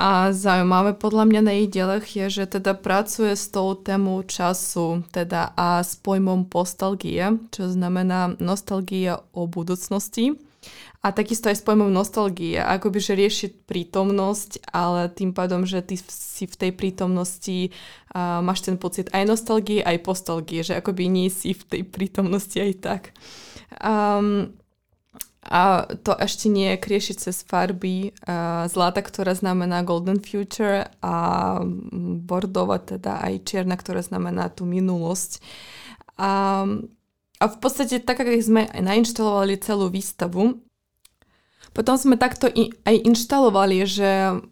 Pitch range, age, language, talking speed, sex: 185-210 Hz, 20-39, Slovak, 135 wpm, female